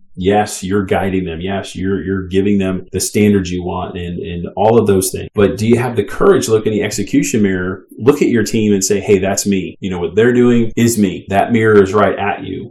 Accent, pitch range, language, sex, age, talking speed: American, 95-115 Hz, English, male, 40-59, 250 wpm